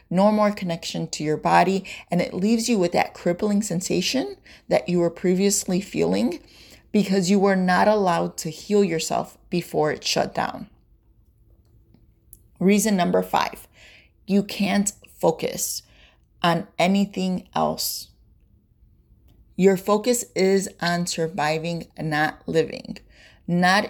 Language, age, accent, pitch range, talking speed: English, 30-49, American, 165-205 Hz, 125 wpm